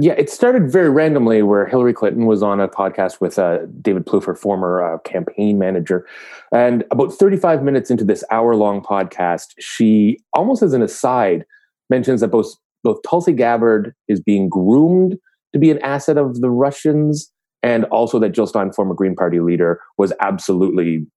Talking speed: 170 wpm